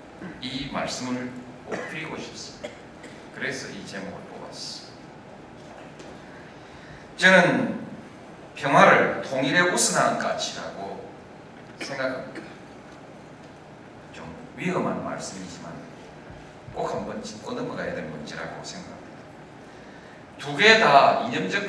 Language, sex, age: Korean, male, 40-59